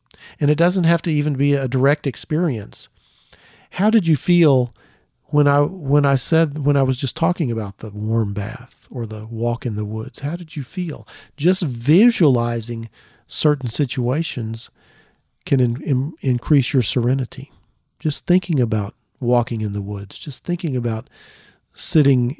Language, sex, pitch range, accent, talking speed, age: English, male, 115-150 Hz, American, 160 wpm, 40-59